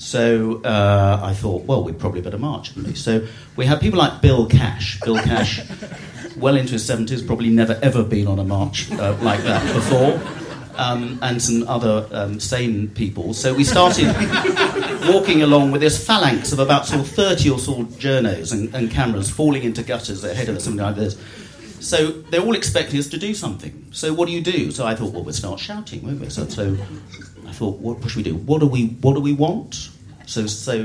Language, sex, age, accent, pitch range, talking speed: English, male, 40-59, British, 110-145 Hz, 210 wpm